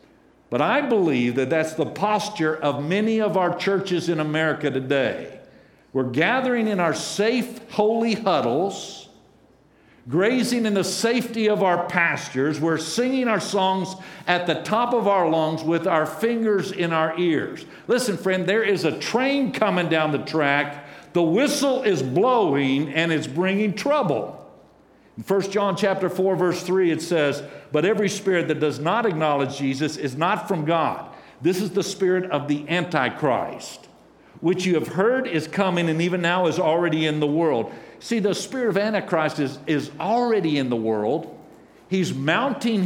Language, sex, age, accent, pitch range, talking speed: English, male, 50-69, American, 155-205 Hz, 165 wpm